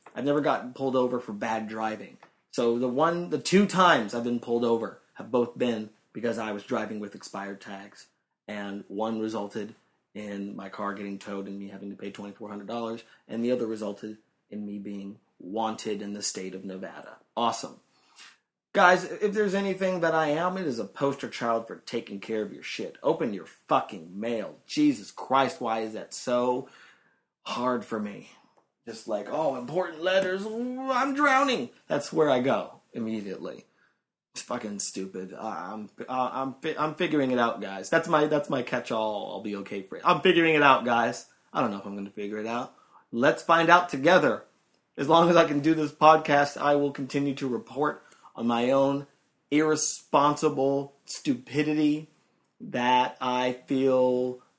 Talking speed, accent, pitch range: 180 wpm, American, 105-150 Hz